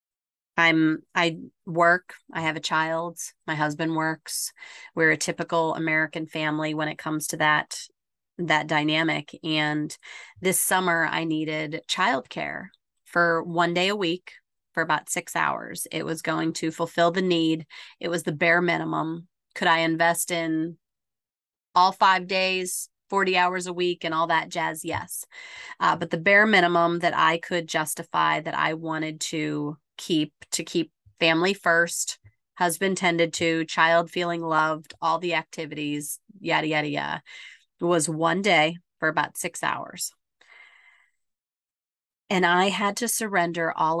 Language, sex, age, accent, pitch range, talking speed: English, female, 30-49, American, 160-175 Hz, 150 wpm